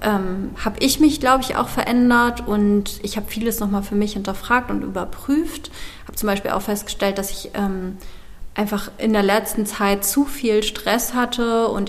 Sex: female